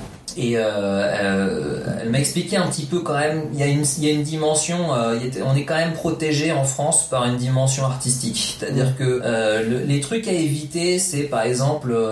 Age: 30-49